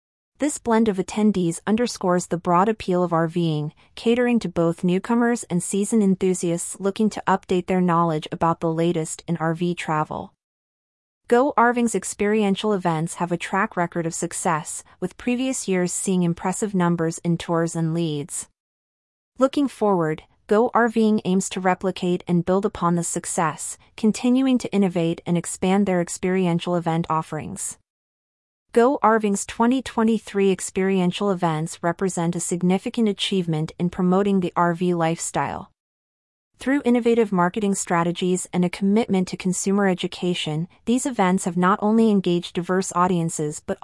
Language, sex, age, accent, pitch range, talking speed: English, female, 30-49, American, 170-205 Hz, 140 wpm